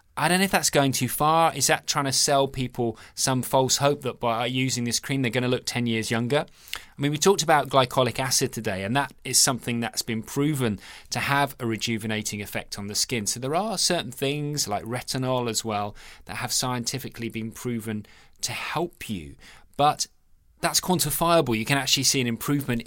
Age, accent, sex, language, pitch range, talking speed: 20-39, British, male, English, 115-145 Hz, 205 wpm